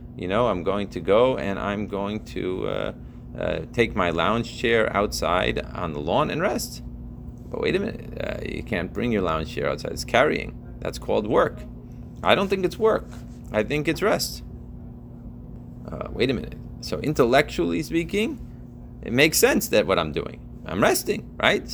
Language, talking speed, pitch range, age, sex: English, 180 wpm, 80-125 Hz, 30-49, male